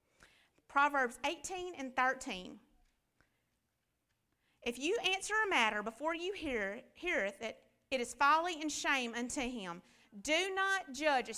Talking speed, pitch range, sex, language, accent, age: 130 wpm, 240-310 Hz, female, English, American, 40-59